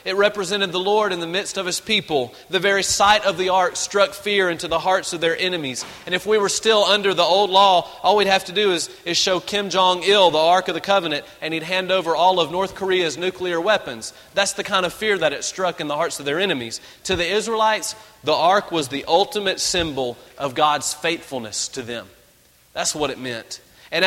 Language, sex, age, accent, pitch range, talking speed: English, male, 30-49, American, 150-195 Hz, 230 wpm